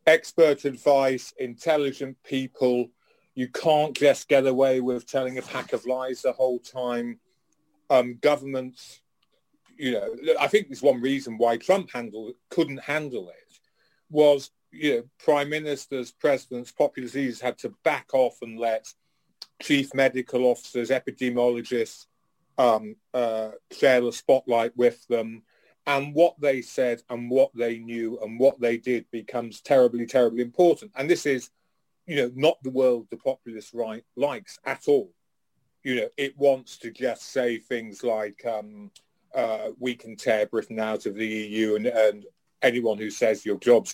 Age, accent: 40-59, British